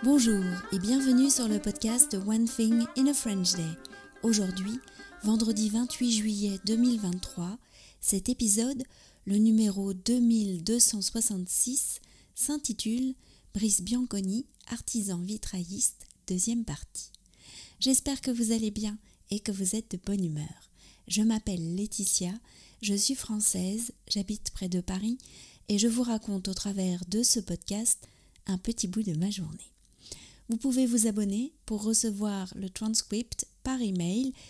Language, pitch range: French, 190-235 Hz